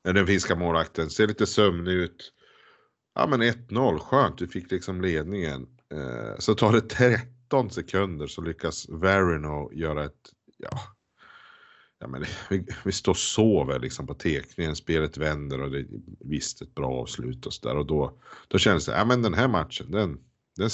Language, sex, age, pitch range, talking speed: Swedish, male, 50-69, 75-105 Hz, 175 wpm